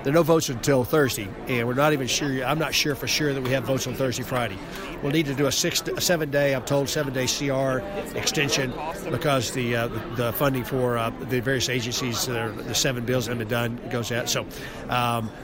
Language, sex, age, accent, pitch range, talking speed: English, male, 60-79, American, 125-145 Hz, 220 wpm